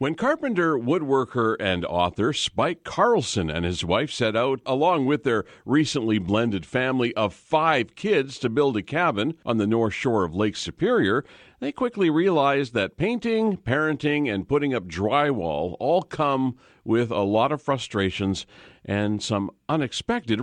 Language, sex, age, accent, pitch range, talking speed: English, male, 50-69, American, 105-150 Hz, 155 wpm